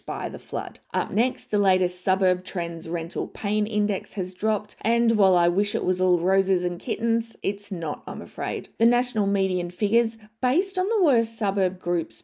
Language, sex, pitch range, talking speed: English, female, 180-240 Hz, 185 wpm